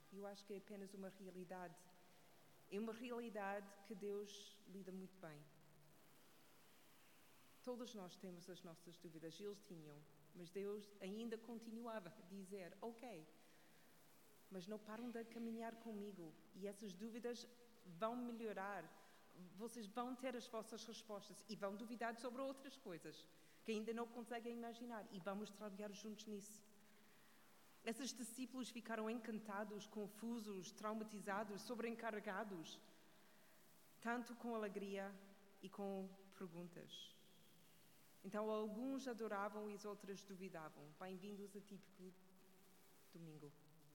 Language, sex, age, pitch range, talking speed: Portuguese, female, 40-59, 185-225 Hz, 120 wpm